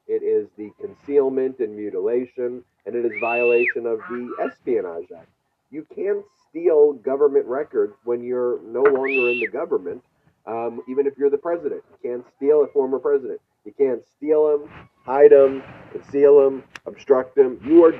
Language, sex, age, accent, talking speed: English, male, 40-59, American, 165 wpm